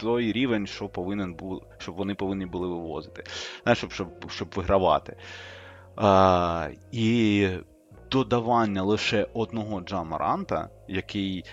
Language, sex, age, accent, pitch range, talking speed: Ukrainian, male, 20-39, native, 90-110 Hz, 115 wpm